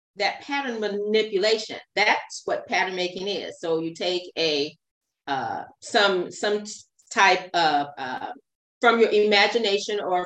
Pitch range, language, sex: 175-230 Hz, English, female